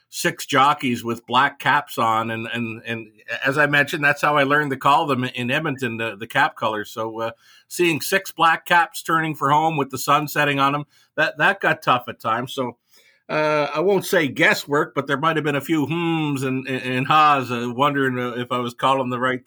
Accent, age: American, 50-69